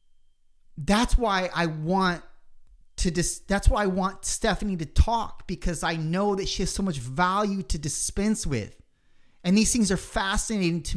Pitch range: 130-185 Hz